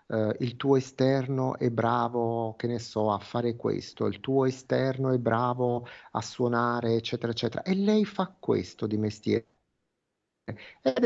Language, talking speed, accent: Italian, 145 wpm, native